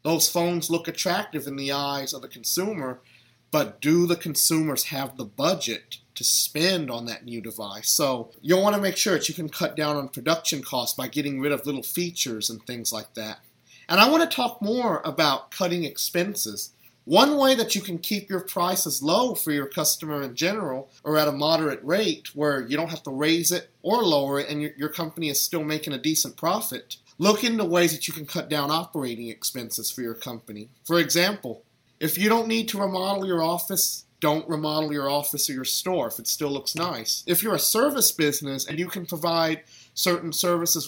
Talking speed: 205 wpm